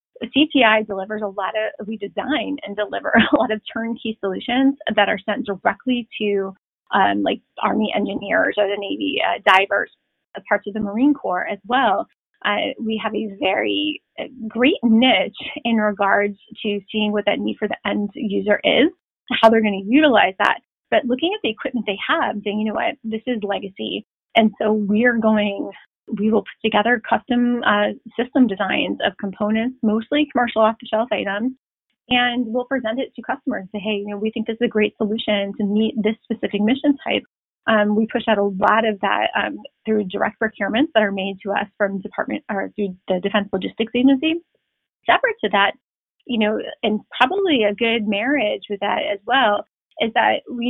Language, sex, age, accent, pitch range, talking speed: English, female, 30-49, American, 205-245 Hz, 190 wpm